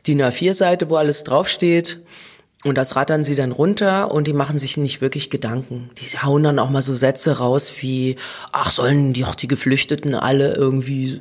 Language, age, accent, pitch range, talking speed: German, 30-49, German, 135-175 Hz, 200 wpm